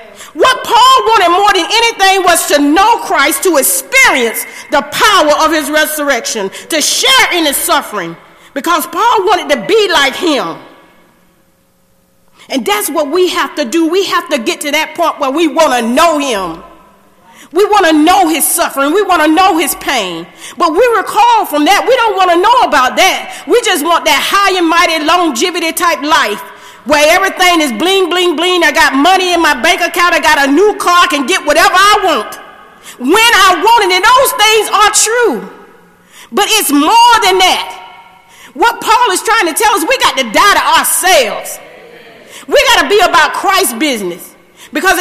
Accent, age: American, 40-59